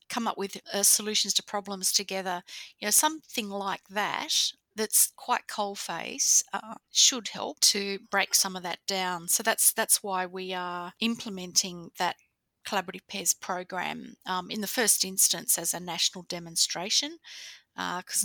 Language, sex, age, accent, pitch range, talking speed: English, female, 30-49, Australian, 180-200 Hz, 145 wpm